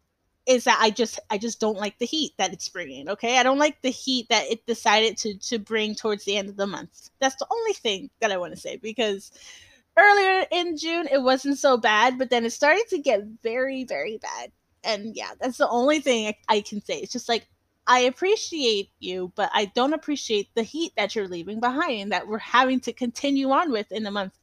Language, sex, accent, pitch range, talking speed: English, female, American, 190-265 Hz, 230 wpm